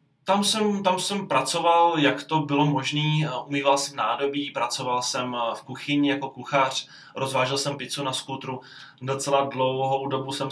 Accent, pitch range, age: native, 135-160 Hz, 20-39